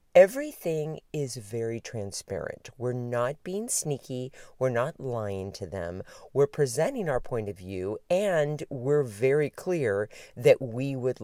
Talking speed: 140 wpm